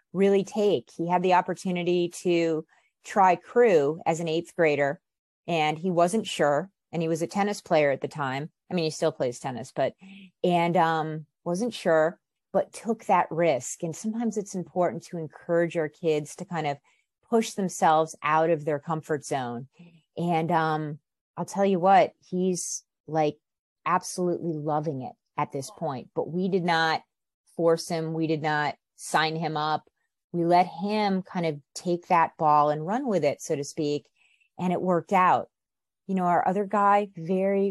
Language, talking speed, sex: English, 175 wpm, female